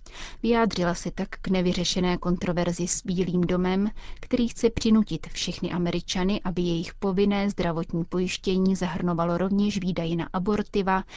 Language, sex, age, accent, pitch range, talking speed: Czech, female, 30-49, native, 175-200 Hz, 130 wpm